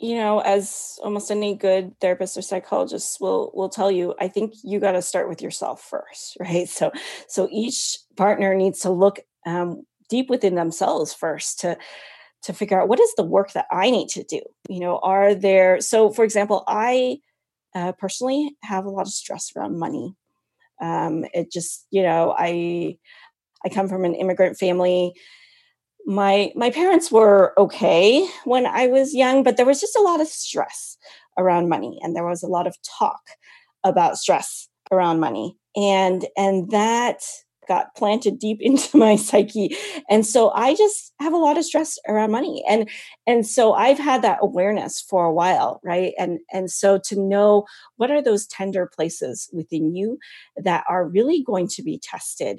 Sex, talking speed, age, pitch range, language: female, 180 wpm, 30-49, 185-250 Hz, English